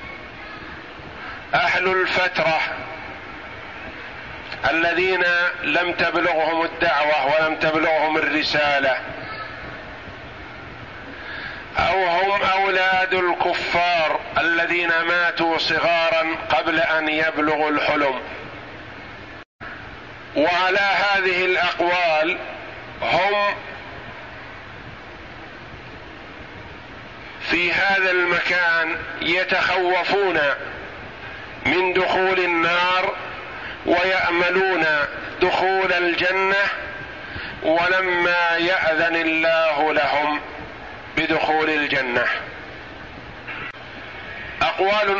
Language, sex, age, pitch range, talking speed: Arabic, male, 50-69, 160-185 Hz, 55 wpm